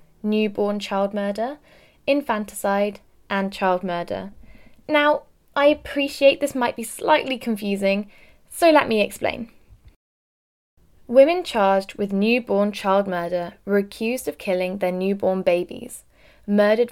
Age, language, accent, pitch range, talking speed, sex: 20-39, English, British, 195-245 Hz, 115 wpm, female